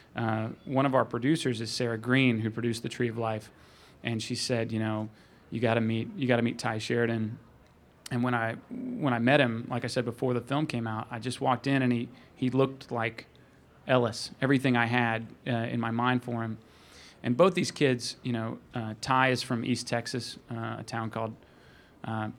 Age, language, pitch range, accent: 30-49, English, 115-130 Hz, American